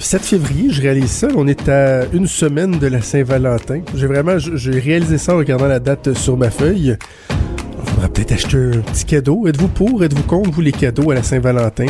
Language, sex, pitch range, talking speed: French, male, 125-150 Hz, 210 wpm